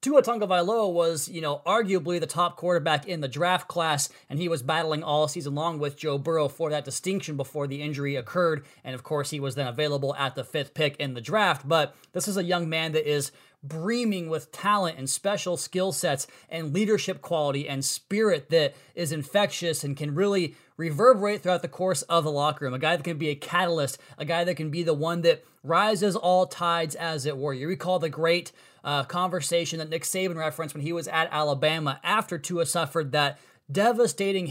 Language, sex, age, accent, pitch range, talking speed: English, male, 20-39, American, 150-180 Hz, 205 wpm